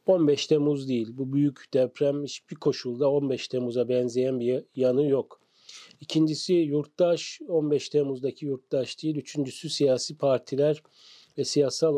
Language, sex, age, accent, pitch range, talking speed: Turkish, male, 40-59, native, 130-155 Hz, 125 wpm